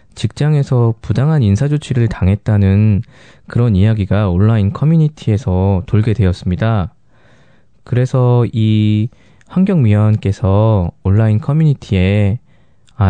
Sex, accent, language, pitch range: male, native, Korean, 100-135 Hz